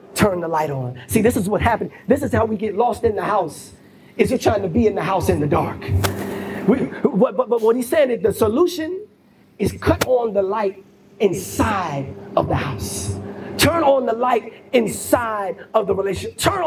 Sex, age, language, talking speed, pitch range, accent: male, 30-49, English, 200 wpm, 190-275 Hz, American